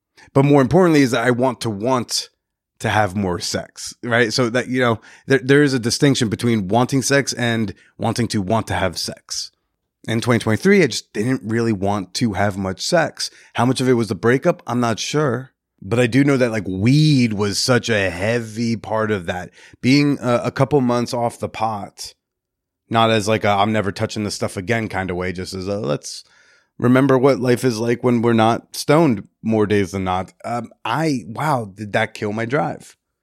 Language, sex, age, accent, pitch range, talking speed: English, male, 30-49, American, 105-125 Hz, 205 wpm